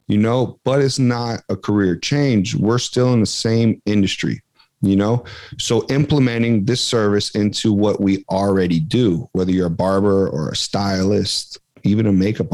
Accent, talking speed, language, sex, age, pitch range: American, 165 wpm, English, male, 40-59, 100-120 Hz